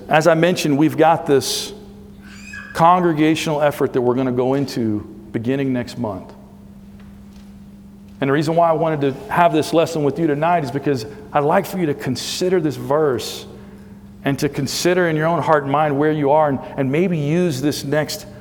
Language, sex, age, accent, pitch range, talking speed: English, male, 50-69, American, 105-150 Hz, 190 wpm